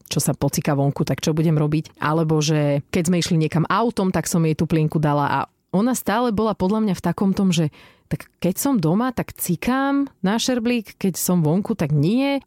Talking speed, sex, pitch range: 210 wpm, female, 160-210 Hz